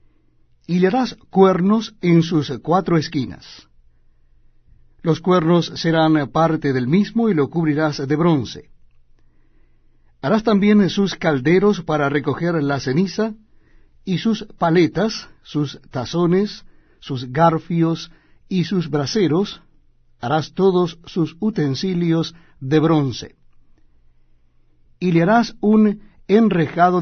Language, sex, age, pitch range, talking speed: Spanish, male, 60-79, 125-180 Hz, 105 wpm